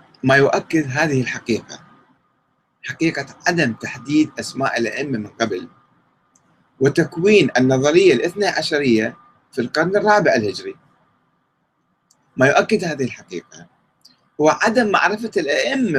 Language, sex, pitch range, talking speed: Arabic, male, 120-160 Hz, 100 wpm